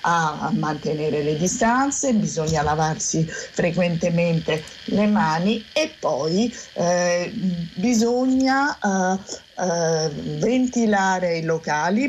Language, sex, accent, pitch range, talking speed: Italian, female, native, 165-220 Hz, 85 wpm